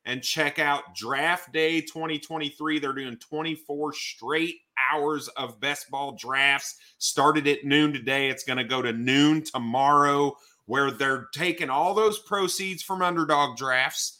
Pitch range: 125-160 Hz